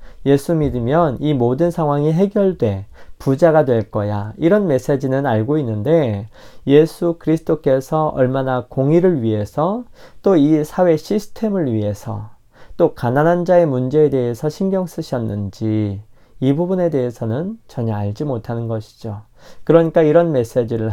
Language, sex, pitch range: Korean, male, 110-155 Hz